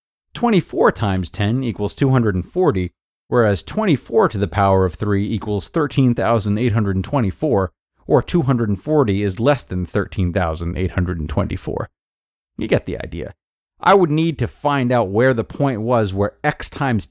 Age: 30-49